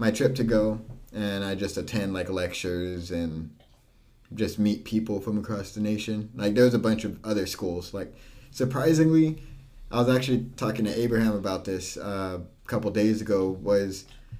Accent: American